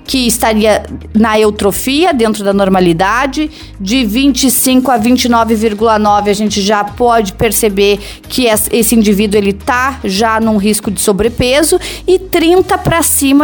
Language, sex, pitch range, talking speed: Portuguese, female, 215-280 Hz, 130 wpm